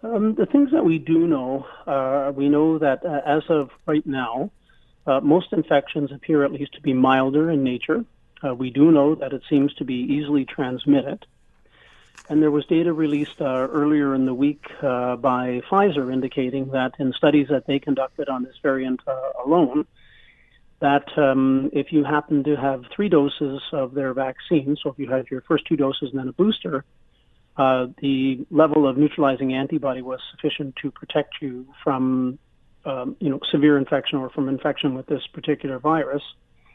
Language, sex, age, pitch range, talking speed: English, male, 40-59, 135-155 Hz, 180 wpm